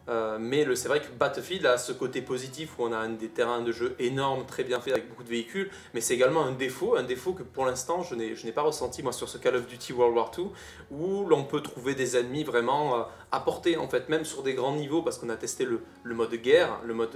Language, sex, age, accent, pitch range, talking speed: French, male, 20-39, French, 120-165 Hz, 275 wpm